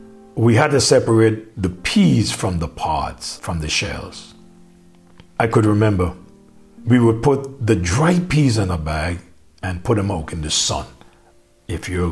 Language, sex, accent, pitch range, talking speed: English, male, American, 85-115 Hz, 165 wpm